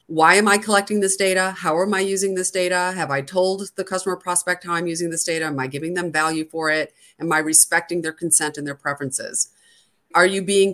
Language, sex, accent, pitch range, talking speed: English, female, American, 155-185 Hz, 230 wpm